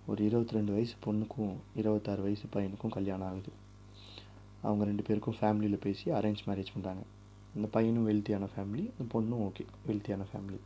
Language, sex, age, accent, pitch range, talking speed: Tamil, male, 20-39, native, 100-110 Hz, 145 wpm